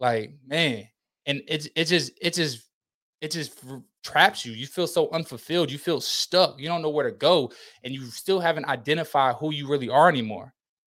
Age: 20-39